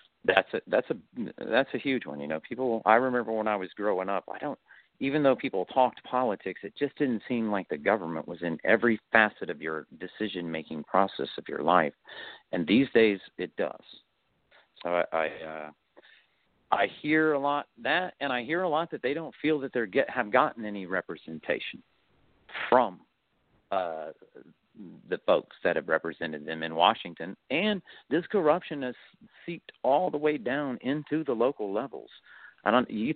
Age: 50-69